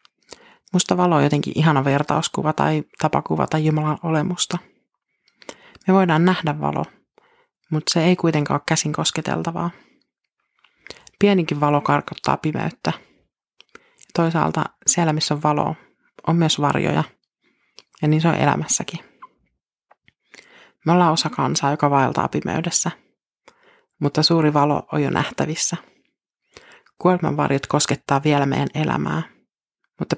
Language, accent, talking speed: Finnish, native, 115 wpm